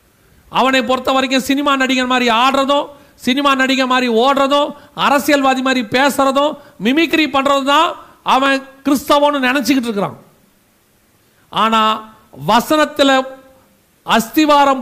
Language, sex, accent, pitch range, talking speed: Tamil, male, native, 235-280 Hz, 95 wpm